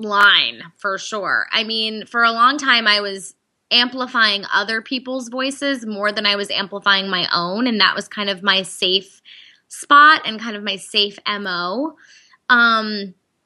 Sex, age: female, 20-39